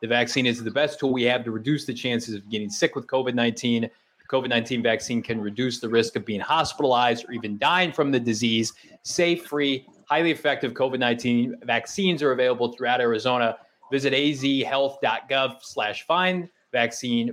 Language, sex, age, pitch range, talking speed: English, male, 20-39, 120-160 Hz, 165 wpm